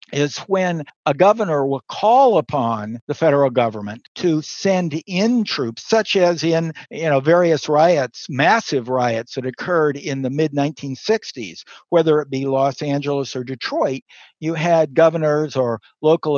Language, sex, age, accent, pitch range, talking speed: English, male, 60-79, American, 150-195 Hz, 145 wpm